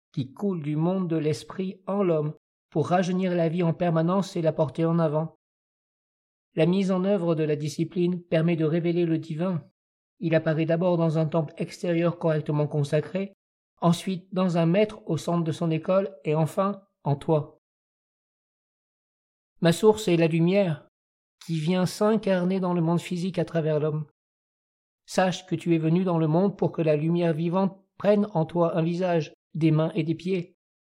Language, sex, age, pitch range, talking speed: French, male, 50-69, 160-180 Hz, 175 wpm